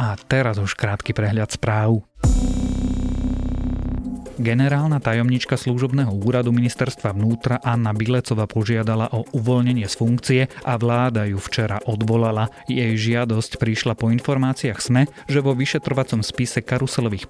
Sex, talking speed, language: male, 120 wpm, Slovak